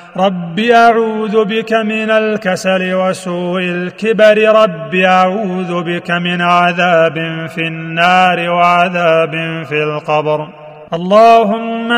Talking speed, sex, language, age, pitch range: 90 wpm, male, Arabic, 30-49, 160-190 Hz